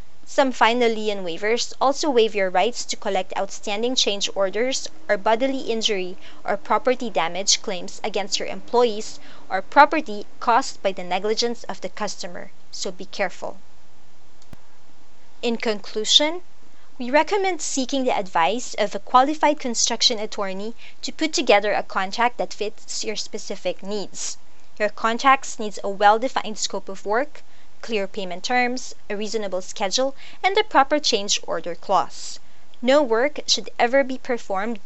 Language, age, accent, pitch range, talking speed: English, 20-39, Filipino, 200-255 Hz, 145 wpm